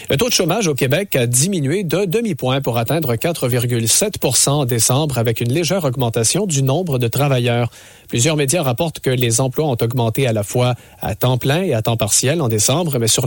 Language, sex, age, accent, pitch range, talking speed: English, male, 40-59, Canadian, 115-150 Hz, 210 wpm